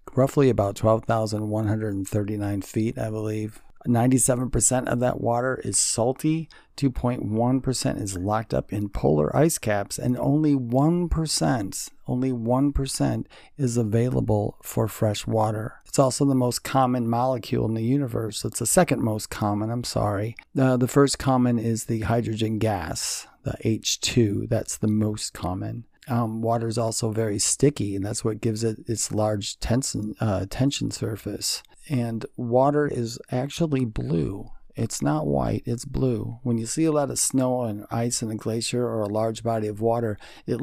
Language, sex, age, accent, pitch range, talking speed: English, male, 40-59, American, 110-130 Hz, 155 wpm